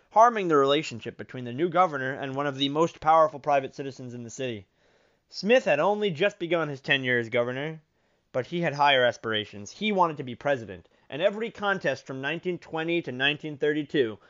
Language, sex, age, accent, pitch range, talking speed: English, male, 30-49, American, 130-170 Hz, 185 wpm